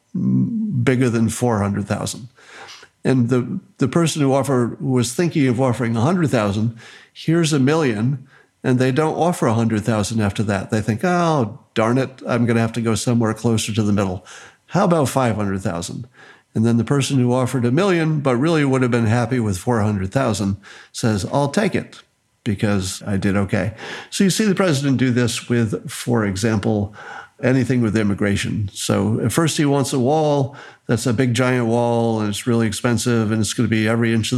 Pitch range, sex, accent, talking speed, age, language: 110-135 Hz, male, American, 180 wpm, 50-69, English